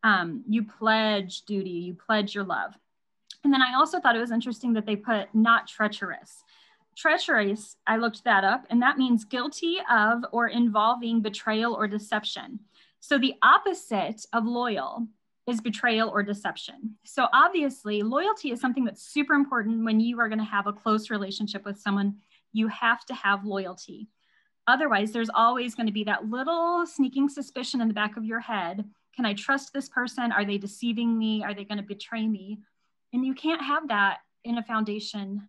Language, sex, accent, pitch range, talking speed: English, female, American, 210-270 Hz, 180 wpm